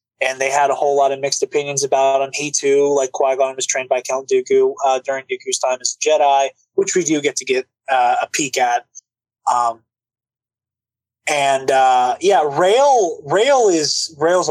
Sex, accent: male, American